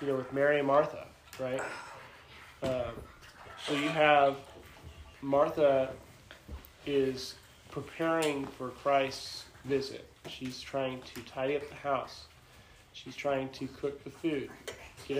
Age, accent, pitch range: 30-49, American, 125-145 Hz